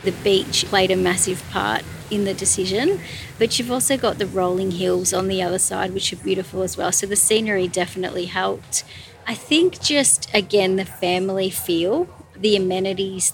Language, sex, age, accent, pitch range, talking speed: English, female, 30-49, Australian, 185-210 Hz, 175 wpm